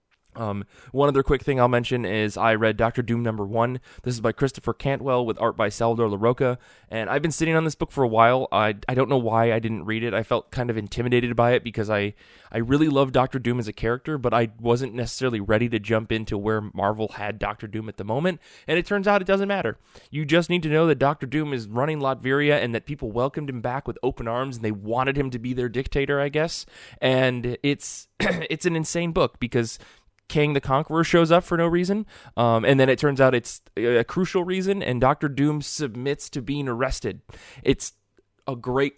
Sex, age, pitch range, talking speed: male, 20-39, 115-140 Hz, 230 wpm